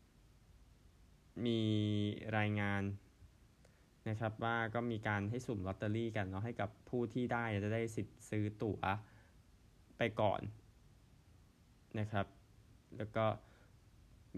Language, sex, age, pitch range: Thai, male, 20-39, 95-110 Hz